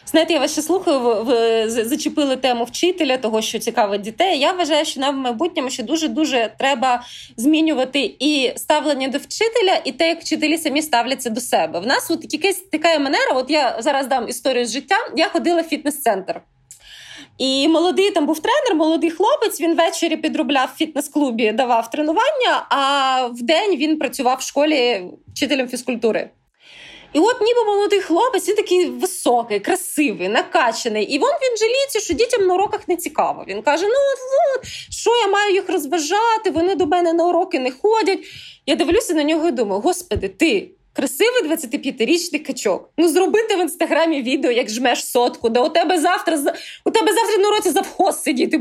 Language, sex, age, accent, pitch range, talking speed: Ukrainian, female, 20-39, native, 265-365 Hz, 175 wpm